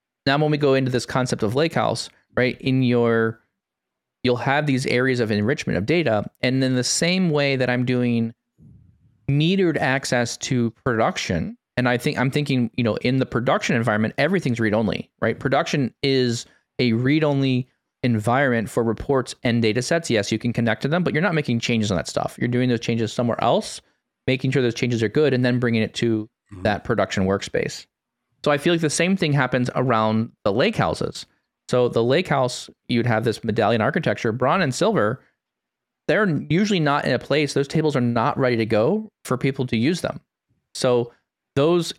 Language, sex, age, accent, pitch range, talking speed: English, male, 20-39, American, 115-140 Hz, 195 wpm